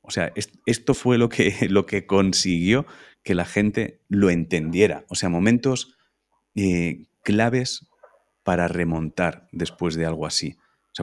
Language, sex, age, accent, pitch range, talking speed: Spanish, male, 30-49, Spanish, 85-105 Hz, 145 wpm